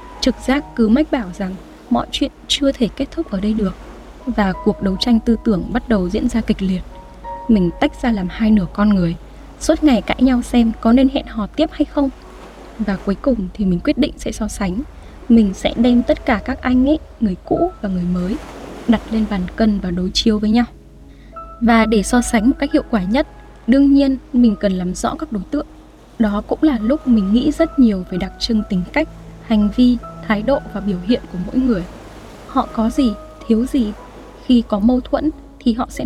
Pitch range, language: 210-265 Hz, Vietnamese